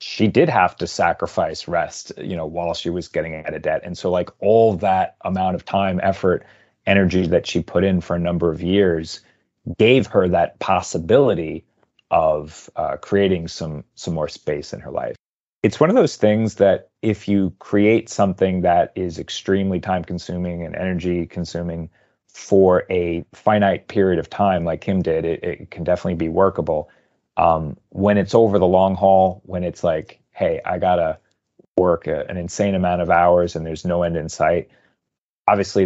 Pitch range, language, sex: 85-100 Hz, English, male